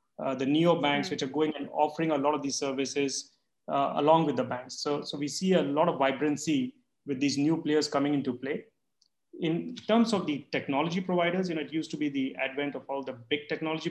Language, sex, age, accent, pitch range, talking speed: English, male, 30-49, Indian, 140-170 Hz, 230 wpm